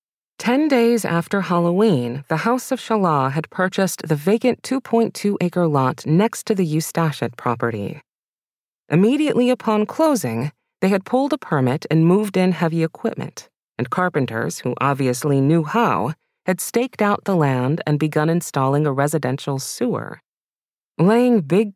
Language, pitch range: English, 140-205 Hz